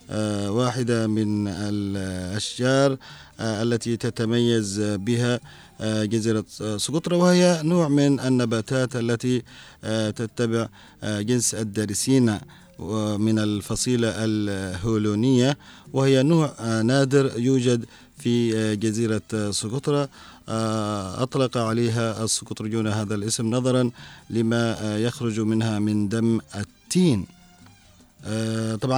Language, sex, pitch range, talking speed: Arabic, male, 105-125 Hz, 80 wpm